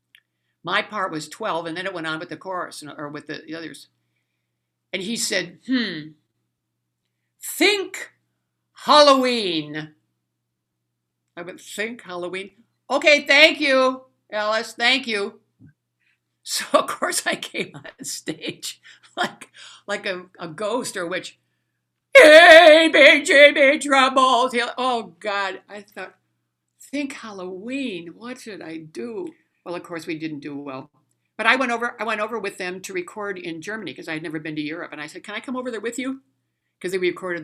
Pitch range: 140-220 Hz